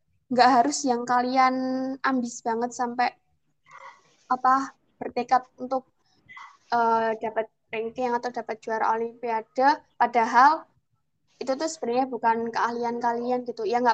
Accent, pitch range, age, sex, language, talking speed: native, 225-255 Hz, 20-39, female, Indonesian, 115 wpm